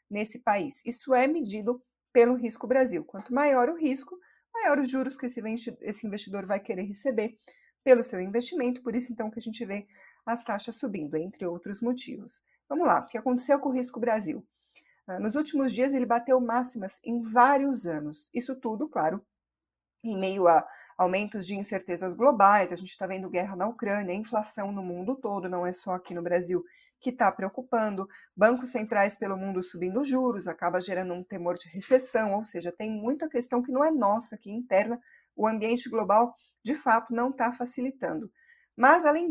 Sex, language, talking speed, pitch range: female, Portuguese, 180 wpm, 205-260 Hz